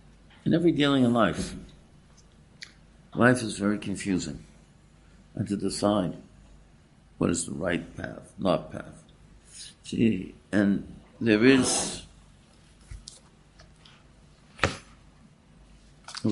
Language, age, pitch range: English, 60-79, 80-105 Hz